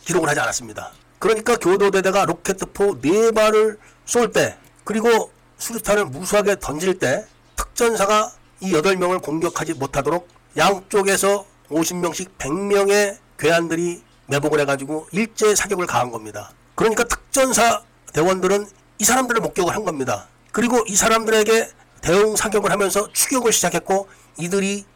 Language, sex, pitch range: Korean, male, 165-225 Hz